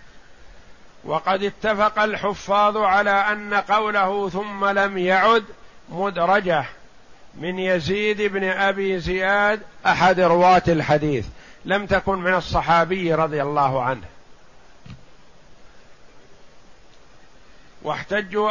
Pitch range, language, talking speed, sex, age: 175-200 Hz, Arabic, 85 wpm, male, 50-69